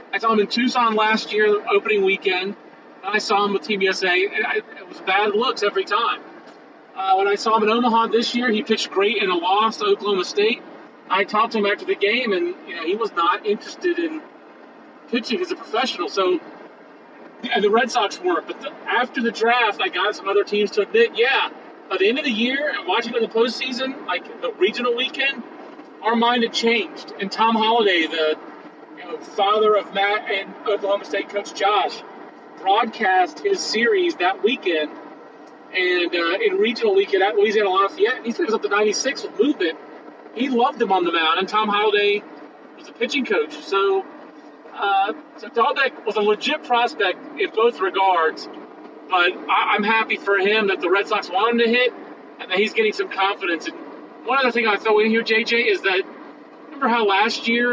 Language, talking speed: English, 195 wpm